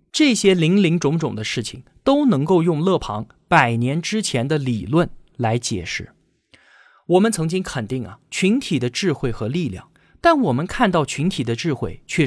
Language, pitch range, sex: Chinese, 130-190 Hz, male